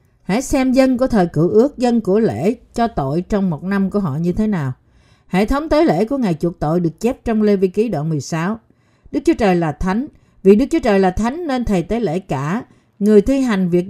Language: Vietnamese